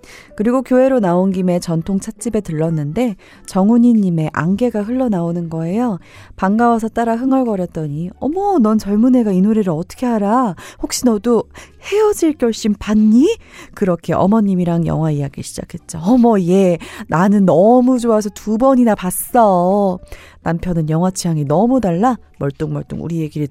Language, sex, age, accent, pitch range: Korean, female, 30-49, native, 165-230 Hz